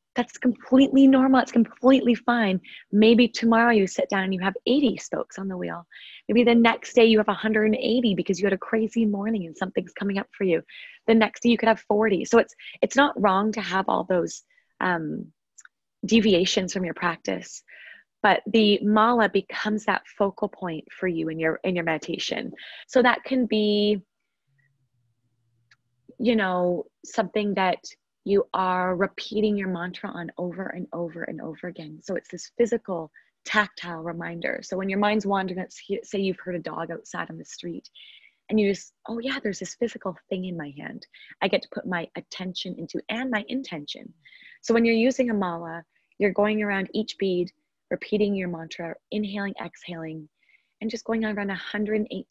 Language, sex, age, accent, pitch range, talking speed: English, female, 20-39, American, 180-230 Hz, 180 wpm